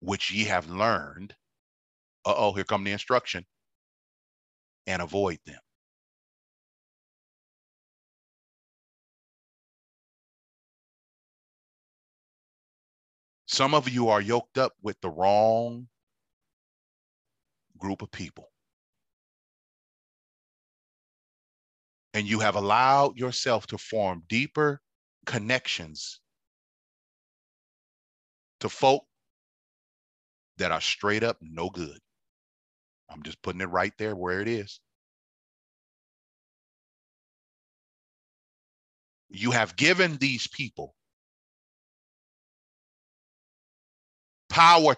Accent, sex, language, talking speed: American, male, English, 75 wpm